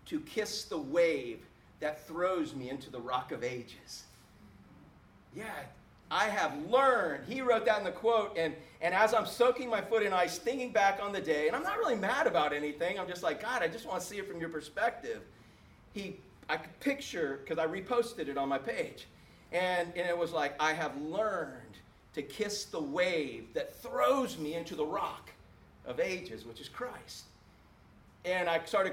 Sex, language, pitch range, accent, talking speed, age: male, English, 150-215 Hz, American, 195 wpm, 40-59